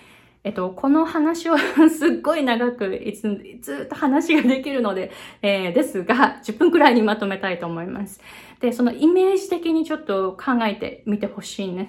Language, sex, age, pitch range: Japanese, female, 20-39, 200-305 Hz